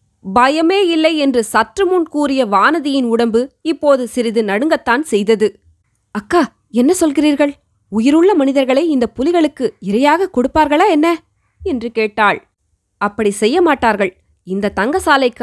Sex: female